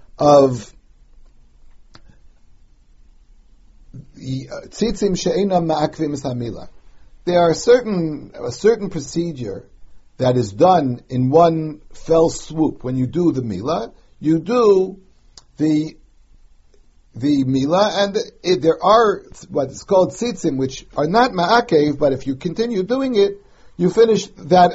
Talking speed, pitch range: 125 wpm, 130-185 Hz